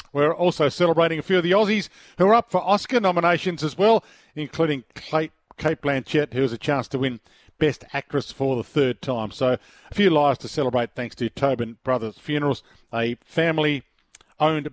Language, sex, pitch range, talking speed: English, male, 135-180 Hz, 185 wpm